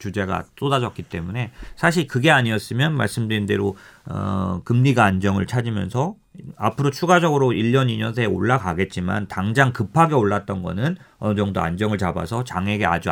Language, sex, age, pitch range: Korean, male, 40-59, 95-130 Hz